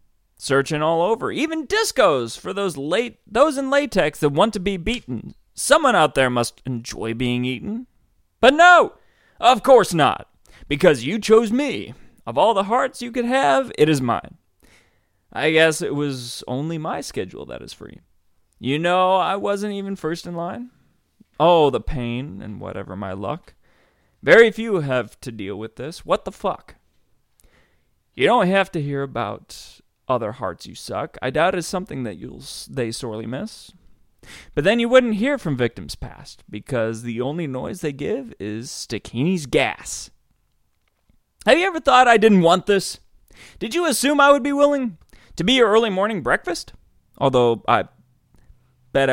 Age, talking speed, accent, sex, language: 30-49, 170 wpm, American, male, English